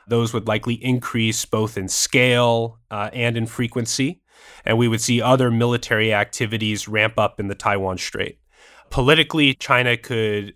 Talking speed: 155 wpm